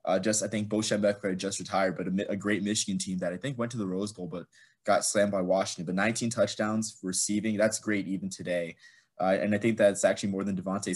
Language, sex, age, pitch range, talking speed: English, male, 20-39, 95-110 Hz, 240 wpm